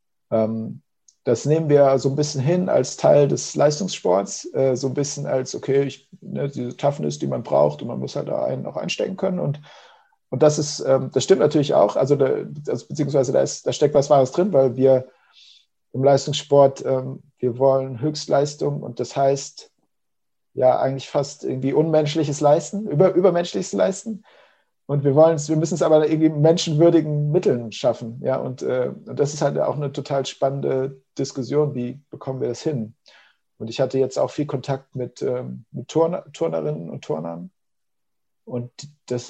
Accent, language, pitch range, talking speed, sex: German, German, 125-150 Hz, 175 wpm, male